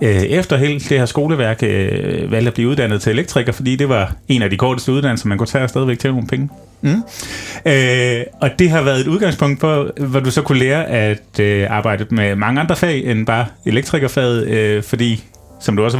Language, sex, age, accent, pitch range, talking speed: Danish, male, 30-49, native, 110-140 Hz, 205 wpm